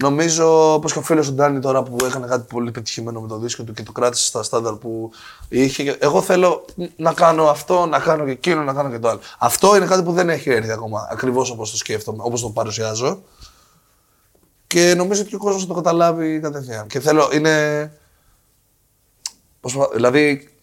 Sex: male